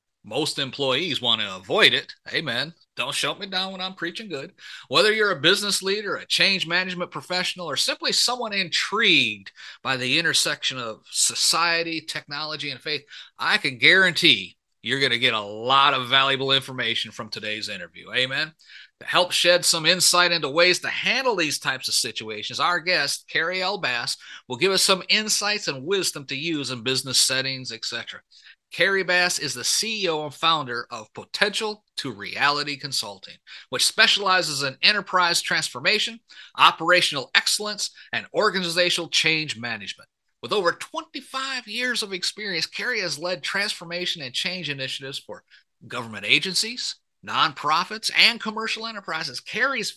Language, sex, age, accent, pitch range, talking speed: English, male, 30-49, American, 145-200 Hz, 155 wpm